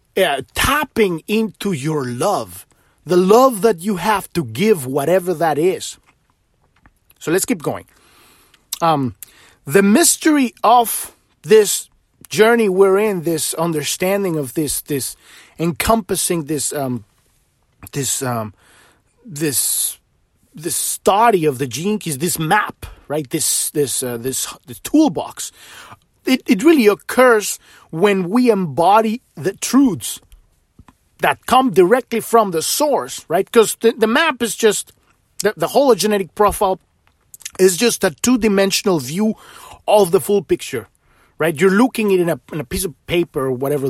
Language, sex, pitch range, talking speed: English, male, 155-225 Hz, 140 wpm